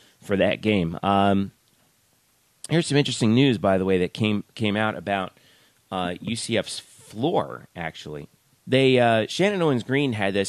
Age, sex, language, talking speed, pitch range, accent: 30-49, male, English, 160 wpm, 100-130 Hz, American